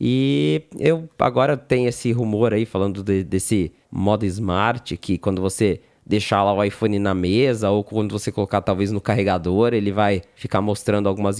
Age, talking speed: 20-39, 175 wpm